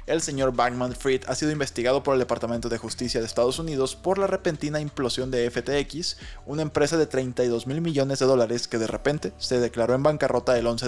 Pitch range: 120-145 Hz